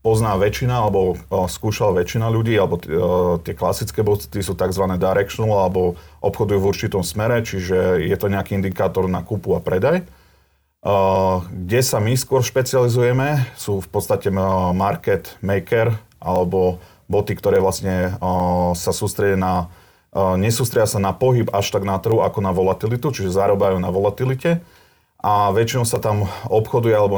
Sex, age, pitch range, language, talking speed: male, 40-59, 95-110 Hz, Slovak, 155 wpm